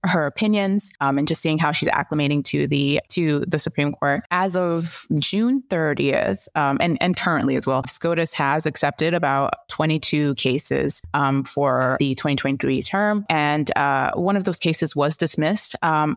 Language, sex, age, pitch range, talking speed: English, female, 20-39, 145-180 Hz, 165 wpm